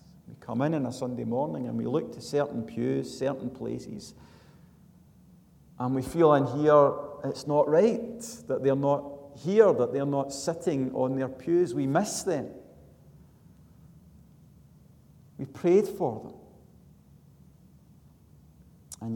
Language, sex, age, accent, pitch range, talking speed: English, male, 40-59, British, 120-155 Hz, 130 wpm